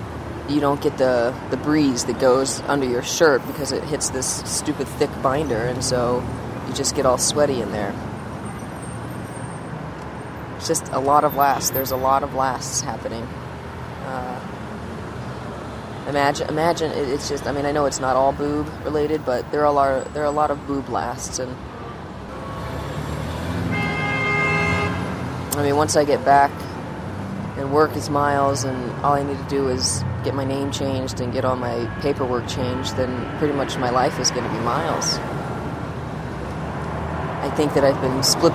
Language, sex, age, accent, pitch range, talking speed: English, female, 20-39, American, 120-145 Hz, 170 wpm